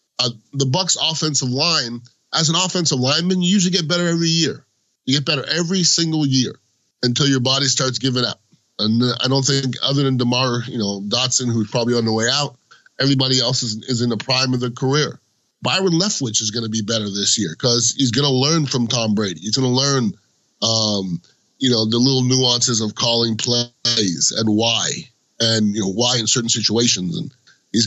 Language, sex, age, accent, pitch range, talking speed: English, male, 30-49, American, 120-150 Hz, 200 wpm